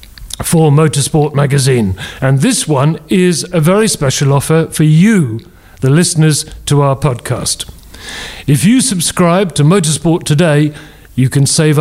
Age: 40-59